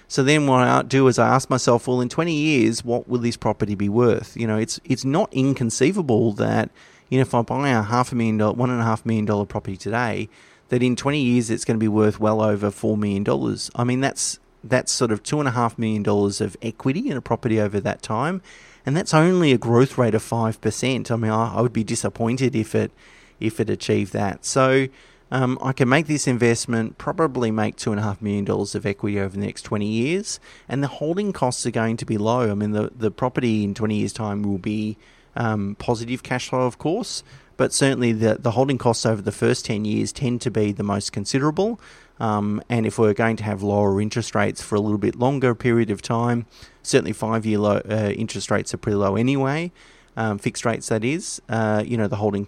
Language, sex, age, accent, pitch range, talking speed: English, male, 30-49, Australian, 105-125 Hz, 225 wpm